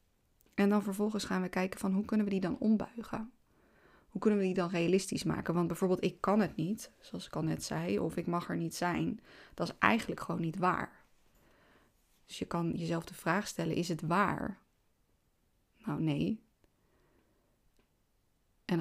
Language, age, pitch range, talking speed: Dutch, 20-39, 170-210 Hz, 180 wpm